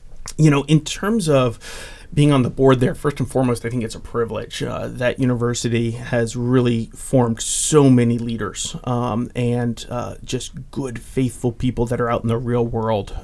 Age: 30-49